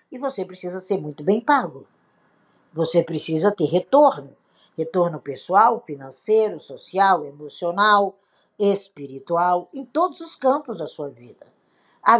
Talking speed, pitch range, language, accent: 125 wpm, 160-240 Hz, Portuguese, Brazilian